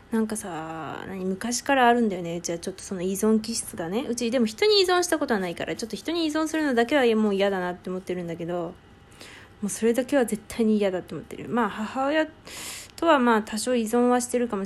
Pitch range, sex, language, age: 185-250 Hz, female, Japanese, 20-39